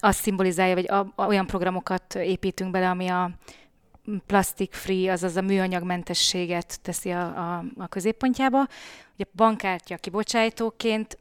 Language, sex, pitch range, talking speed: Hungarian, female, 180-210 Hz, 120 wpm